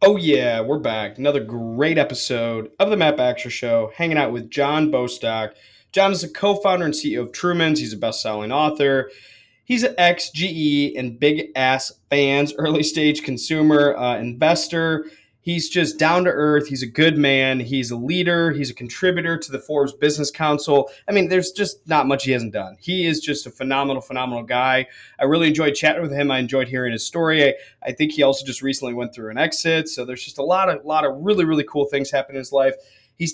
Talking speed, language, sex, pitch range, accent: 205 wpm, English, male, 135-160 Hz, American